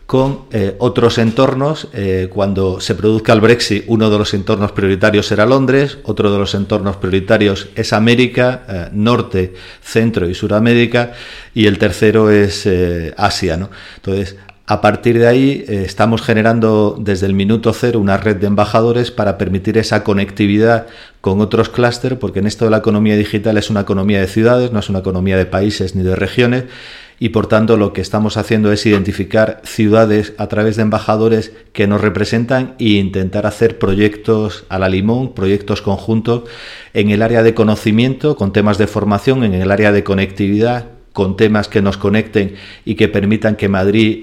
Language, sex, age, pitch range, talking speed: Spanish, male, 40-59, 100-115 Hz, 175 wpm